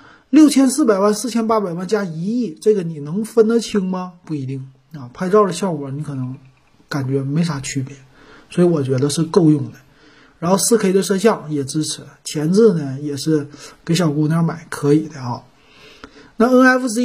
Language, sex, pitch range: Chinese, male, 150-210 Hz